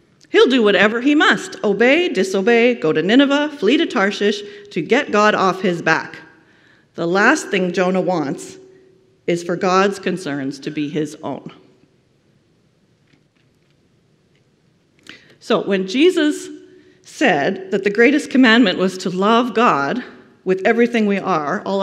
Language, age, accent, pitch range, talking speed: English, 40-59, American, 185-280 Hz, 135 wpm